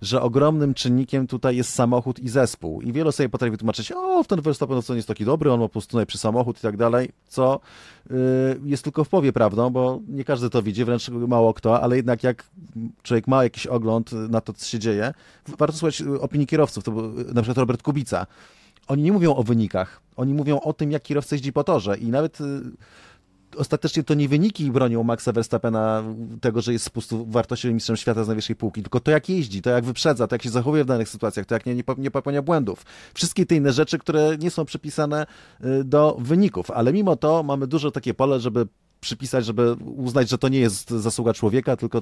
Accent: native